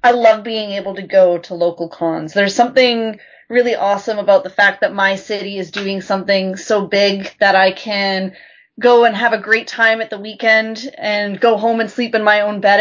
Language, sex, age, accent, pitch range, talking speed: English, female, 20-39, American, 195-235 Hz, 210 wpm